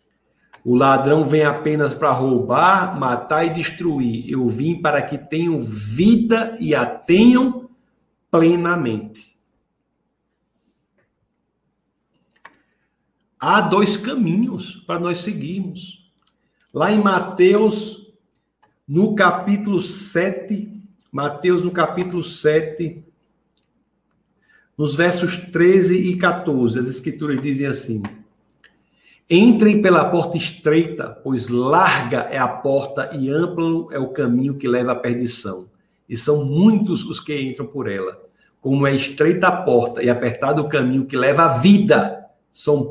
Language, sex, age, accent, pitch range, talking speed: Portuguese, male, 60-79, Brazilian, 135-190 Hz, 115 wpm